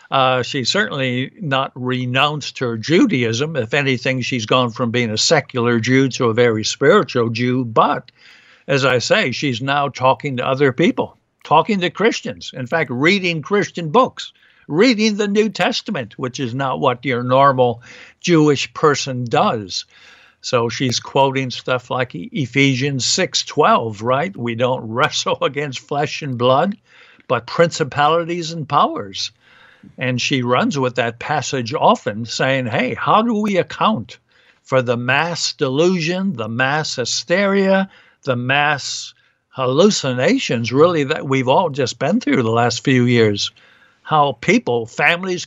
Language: English